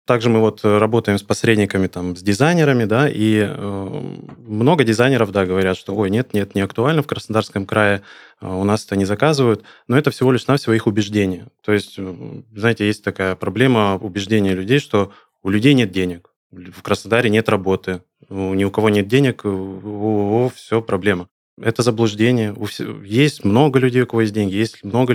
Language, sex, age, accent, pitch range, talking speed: Russian, male, 20-39, native, 95-115 Hz, 185 wpm